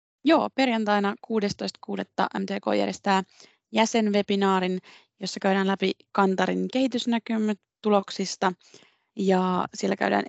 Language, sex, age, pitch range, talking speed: Finnish, female, 30-49, 155-205 Hz, 80 wpm